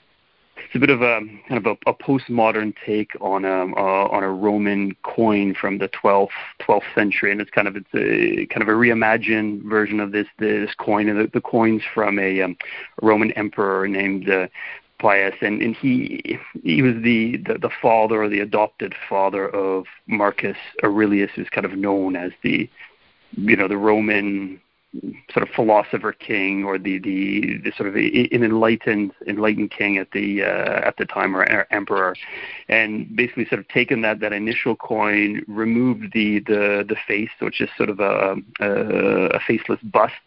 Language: English